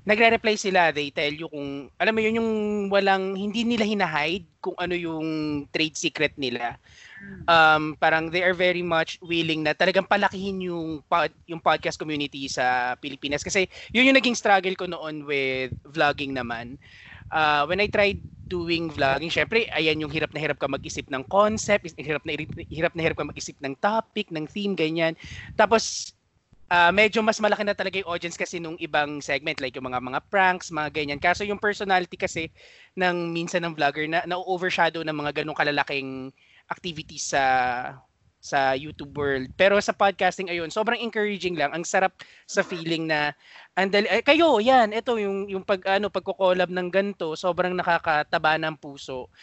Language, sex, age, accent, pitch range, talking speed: Filipino, male, 20-39, native, 145-195 Hz, 170 wpm